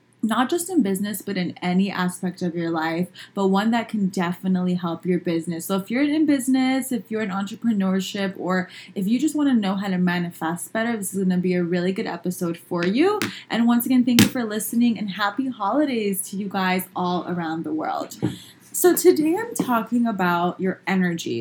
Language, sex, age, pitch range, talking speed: English, female, 20-39, 175-225 Hz, 205 wpm